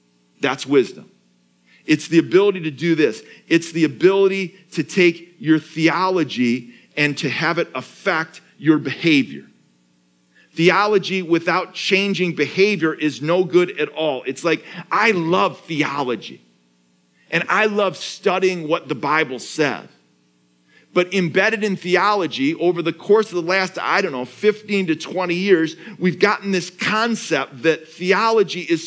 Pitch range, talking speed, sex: 160-210 Hz, 140 wpm, male